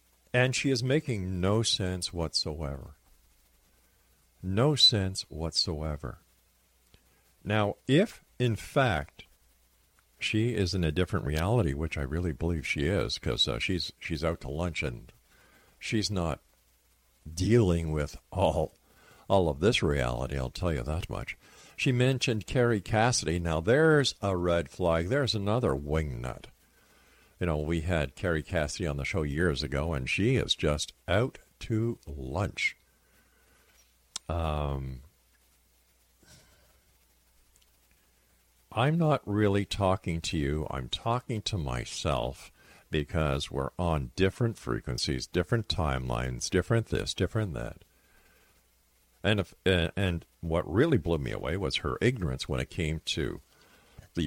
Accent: American